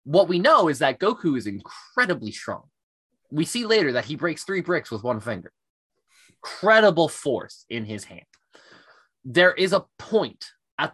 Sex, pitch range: male, 120-190 Hz